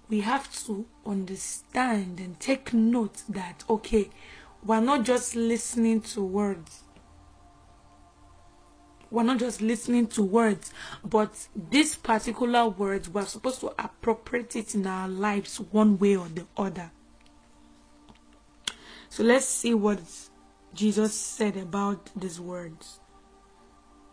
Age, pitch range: 20-39, 200-250 Hz